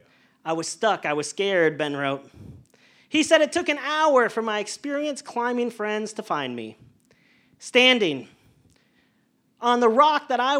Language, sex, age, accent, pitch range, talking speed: English, male, 40-59, American, 195-285 Hz, 160 wpm